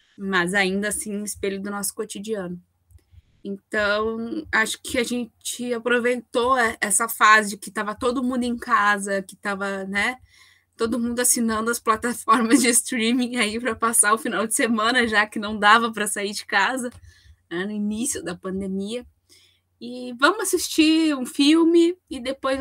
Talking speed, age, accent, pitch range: 160 wpm, 10-29, Brazilian, 190-235 Hz